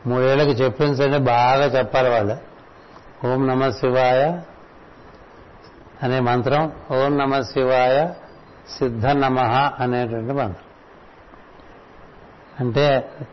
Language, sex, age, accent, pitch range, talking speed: Telugu, male, 60-79, native, 125-140 Hz, 80 wpm